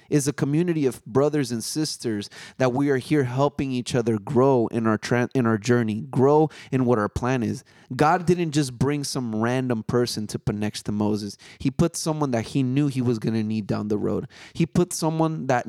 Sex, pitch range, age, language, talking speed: male, 120-150 Hz, 30-49, English, 215 wpm